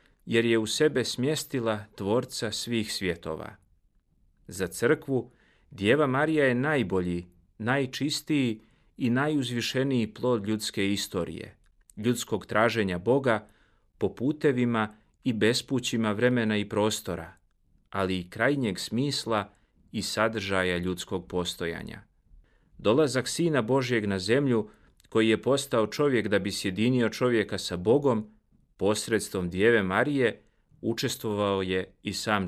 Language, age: Croatian, 40-59